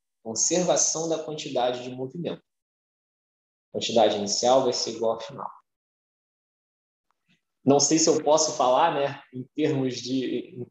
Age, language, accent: 20-39, Portuguese, Brazilian